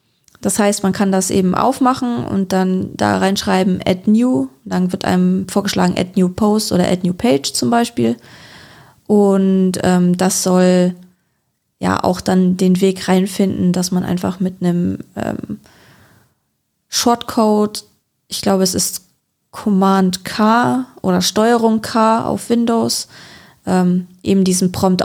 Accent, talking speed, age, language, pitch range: German, 140 wpm, 20-39, German, 180-215 Hz